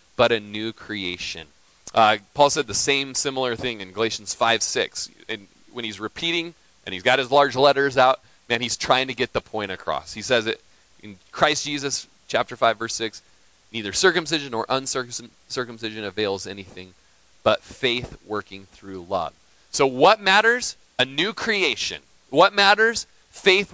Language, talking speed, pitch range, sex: English, 165 wpm, 105-150 Hz, male